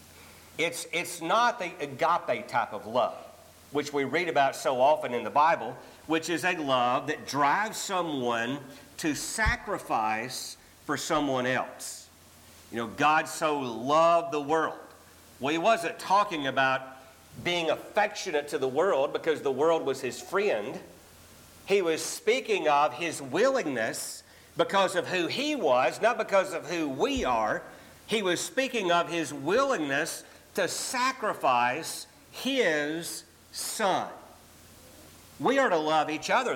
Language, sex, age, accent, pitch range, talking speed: English, male, 50-69, American, 125-190 Hz, 140 wpm